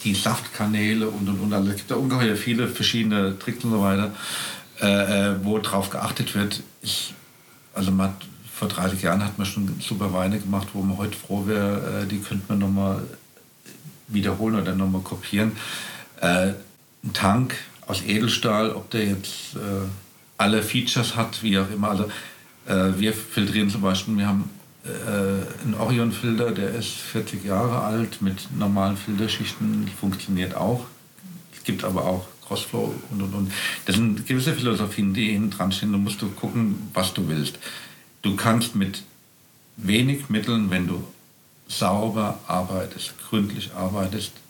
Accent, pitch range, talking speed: German, 95-110 Hz, 155 wpm